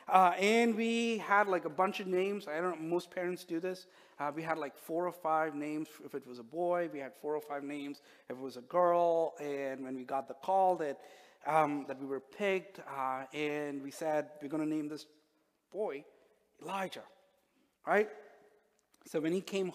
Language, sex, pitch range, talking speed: English, male, 160-215 Hz, 205 wpm